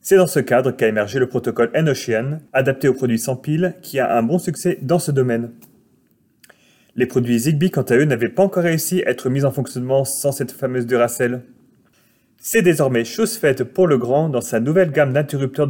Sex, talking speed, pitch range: male, 200 wpm, 125-165 Hz